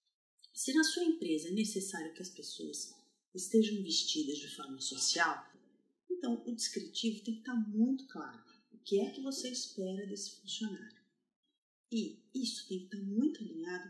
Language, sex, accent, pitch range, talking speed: Portuguese, female, Brazilian, 185-260 Hz, 160 wpm